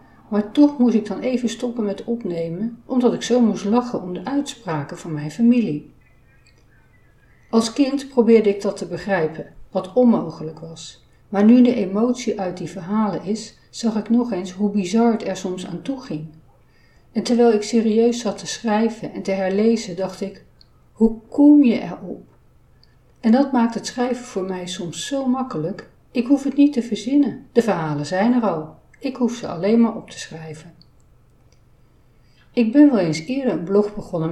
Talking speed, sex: 180 wpm, female